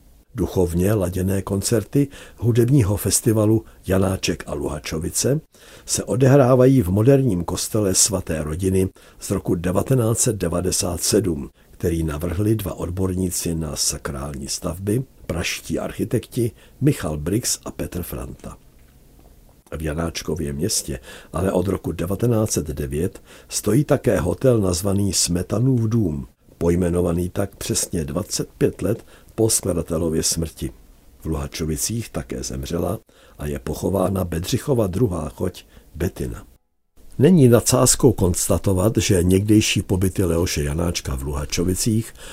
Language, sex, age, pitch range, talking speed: Czech, male, 60-79, 80-105 Hz, 105 wpm